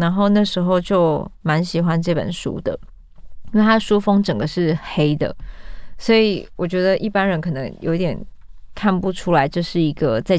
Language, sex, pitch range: Chinese, female, 160-195 Hz